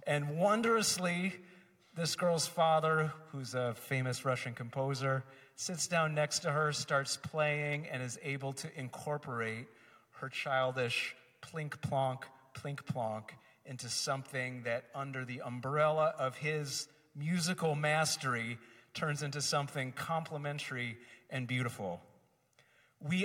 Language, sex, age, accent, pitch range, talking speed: English, male, 40-59, American, 135-180 Hz, 110 wpm